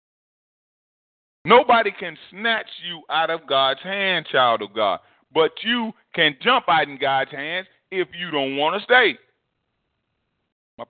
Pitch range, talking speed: 110-140 Hz, 145 wpm